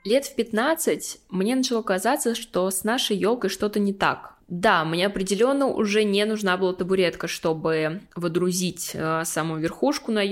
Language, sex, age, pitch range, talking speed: Russian, female, 20-39, 180-210 Hz, 150 wpm